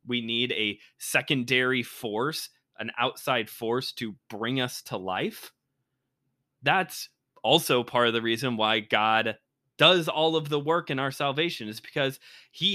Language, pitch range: English, 125-175 Hz